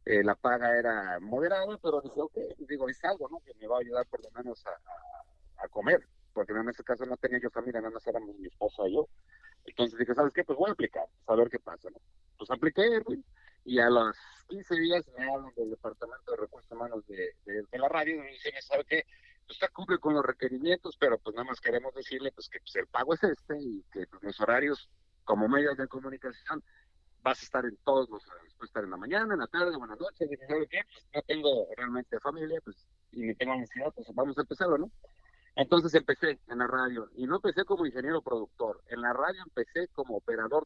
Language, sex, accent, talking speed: English, male, Mexican, 225 wpm